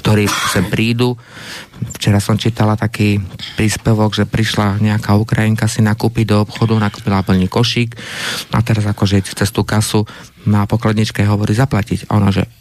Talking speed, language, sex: 145 wpm, Slovak, male